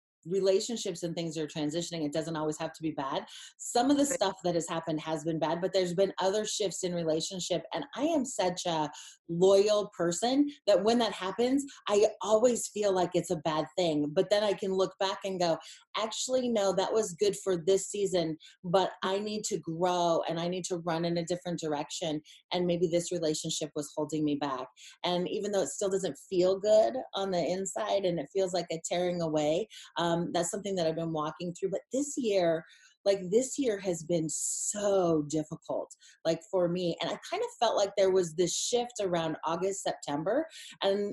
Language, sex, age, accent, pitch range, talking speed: English, female, 30-49, American, 165-210 Hz, 205 wpm